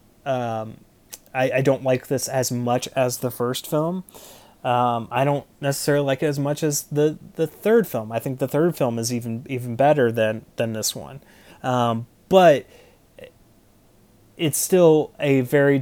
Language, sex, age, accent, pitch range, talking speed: English, male, 30-49, American, 120-145 Hz, 165 wpm